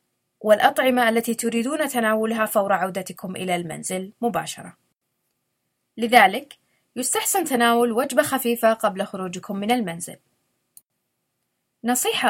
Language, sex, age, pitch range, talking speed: Arabic, female, 20-39, 200-255 Hz, 95 wpm